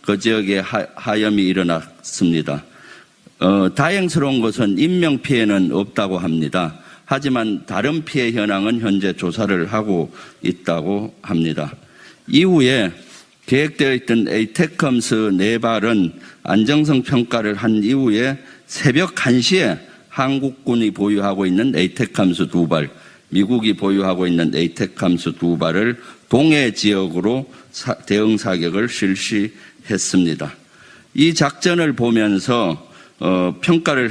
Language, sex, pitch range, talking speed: English, male, 95-130 Hz, 100 wpm